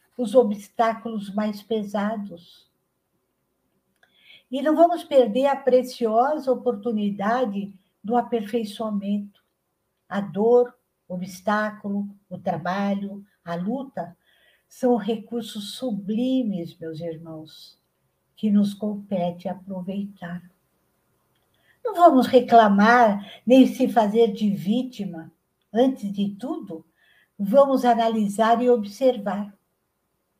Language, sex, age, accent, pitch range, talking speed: Portuguese, female, 60-79, Brazilian, 200-250 Hz, 90 wpm